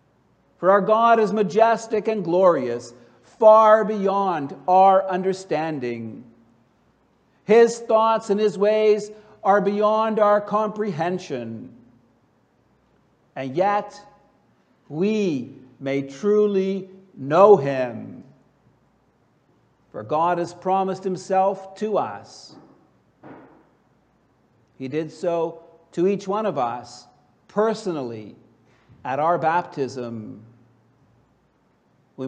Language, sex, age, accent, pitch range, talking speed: English, male, 60-79, American, 135-205 Hz, 85 wpm